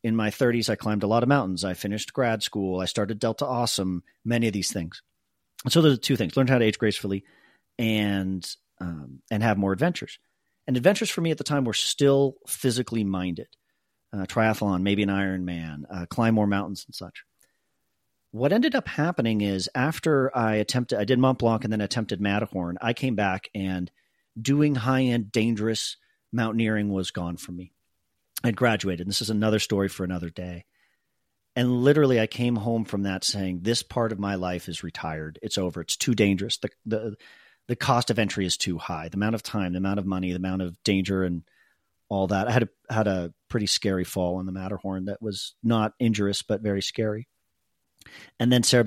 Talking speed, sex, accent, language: 200 wpm, male, American, English